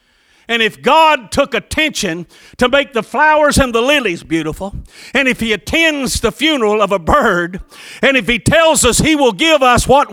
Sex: male